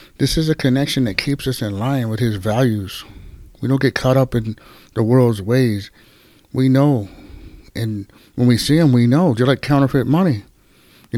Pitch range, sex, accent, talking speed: 115-145 Hz, male, American, 190 wpm